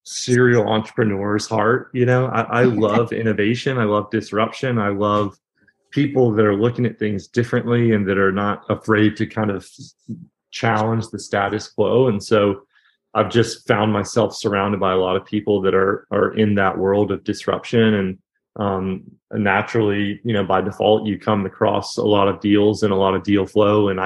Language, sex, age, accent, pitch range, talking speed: English, male, 30-49, American, 100-110 Hz, 185 wpm